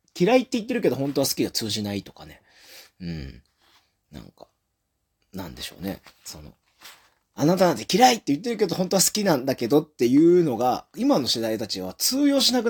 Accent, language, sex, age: native, Japanese, male, 30-49